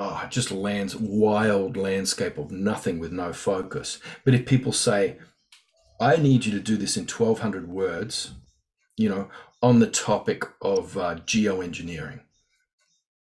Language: English